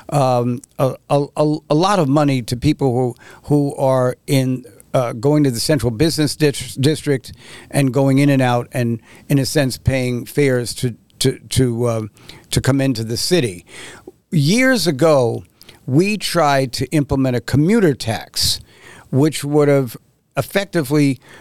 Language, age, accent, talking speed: English, 60-79, American, 150 wpm